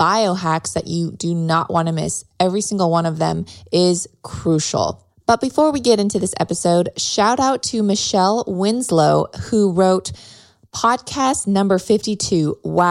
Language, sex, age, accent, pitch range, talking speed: English, female, 20-39, American, 165-205 Hz, 150 wpm